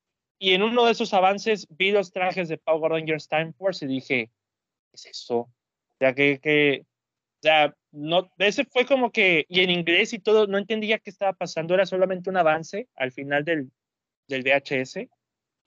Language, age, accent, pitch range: Spanish, 30-49, Mexican, 145-200 Hz